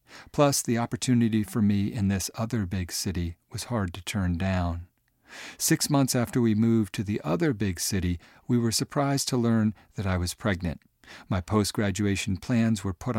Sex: male